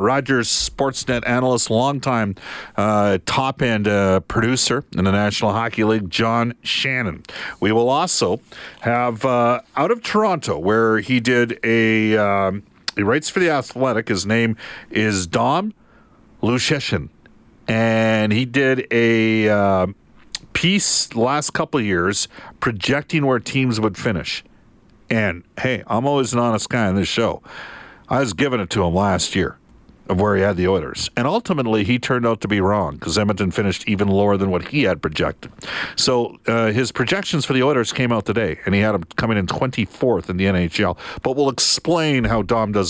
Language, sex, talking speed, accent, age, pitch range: English, male, 170 wpm, American, 50-69, 100-125 Hz